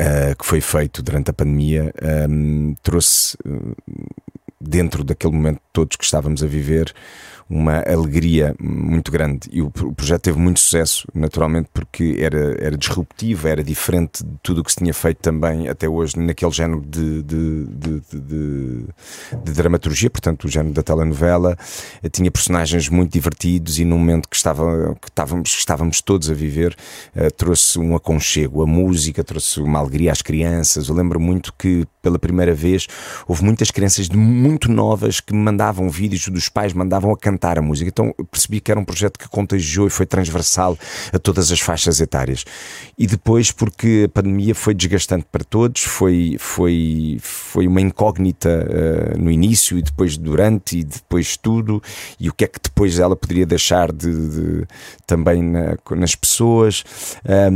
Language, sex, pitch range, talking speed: Portuguese, male, 80-100 Hz, 155 wpm